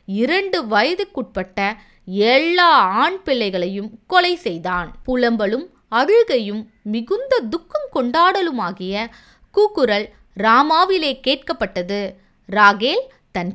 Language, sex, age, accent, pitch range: Tamil, female, 20-39, native, 195-315 Hz